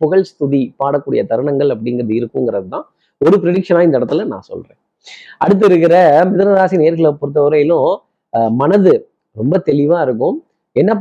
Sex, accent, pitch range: male, native, 145-190 Hz